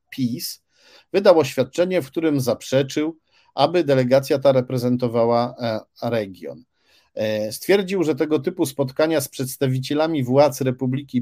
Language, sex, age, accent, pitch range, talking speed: Polish, male, 40-59, native, 125-155 Hz, 105 wpm